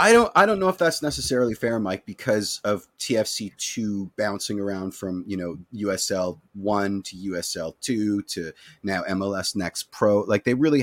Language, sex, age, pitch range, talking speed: English, male, 30-49, 95-115 Hz, 175 wpm